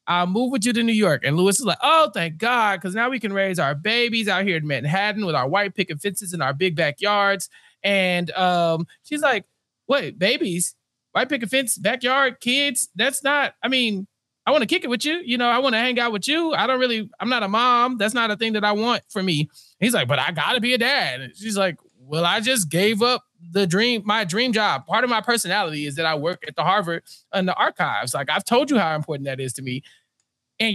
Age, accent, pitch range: 20-39, American, 170-240 Hz